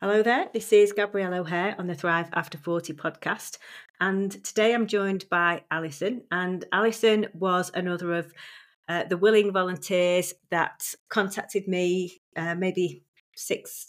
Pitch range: 165-200 Hz